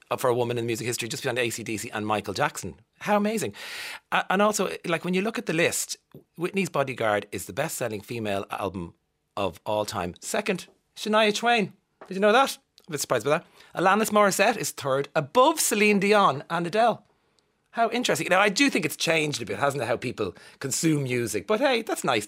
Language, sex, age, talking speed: English, male, 40-59, 200 wpm